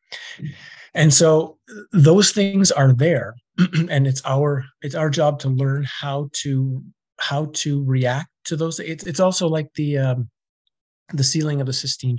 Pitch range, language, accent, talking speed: 130-150 Hz, English, American, 160 wpm